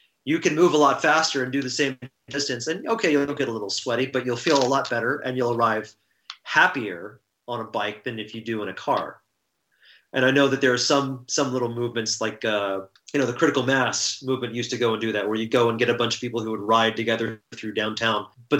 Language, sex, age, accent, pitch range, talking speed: English, male, 30-49, American, 110-130 Hz, 250 wpm